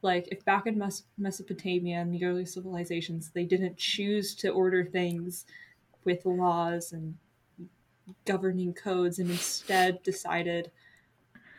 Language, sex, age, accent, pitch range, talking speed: English, female, 20-39, American, 170-195 Hz, 120 wpm